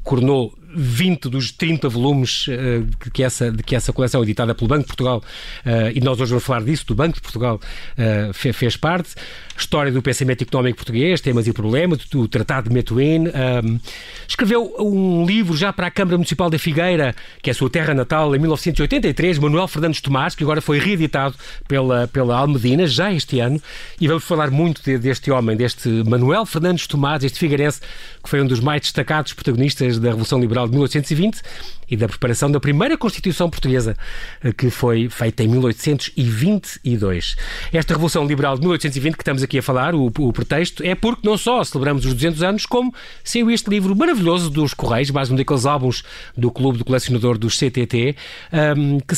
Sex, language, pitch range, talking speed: male, Portuguese, 125-170 Hz, 180 wpm